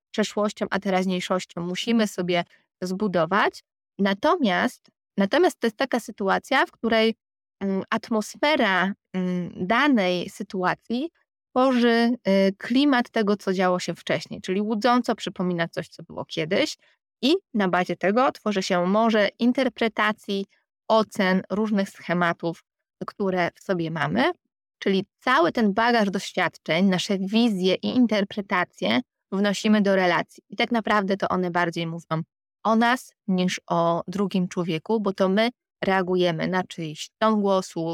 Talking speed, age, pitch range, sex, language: 125 wpm, 20-39, 180-220 Hz, female, Polish